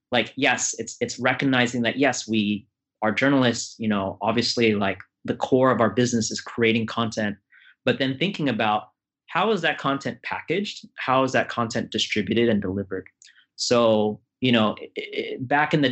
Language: English